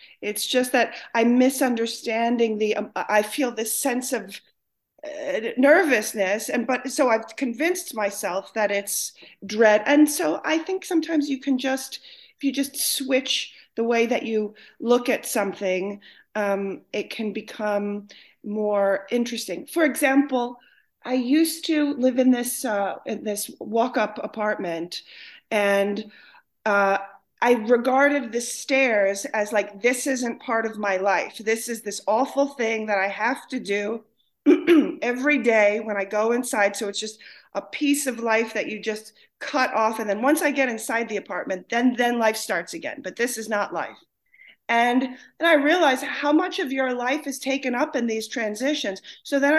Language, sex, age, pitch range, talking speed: English, female, 40-59, 210-275 Hz, 165 wpm